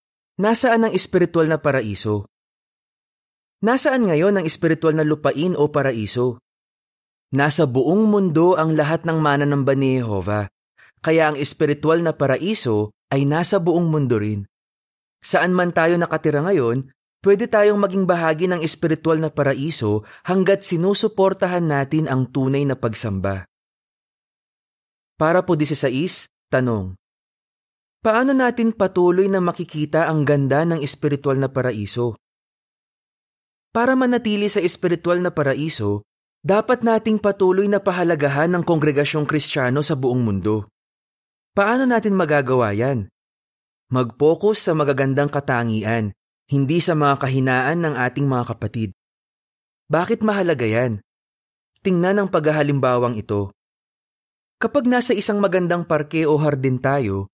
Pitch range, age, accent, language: 130-180 Hz, 20-39, native, Filipino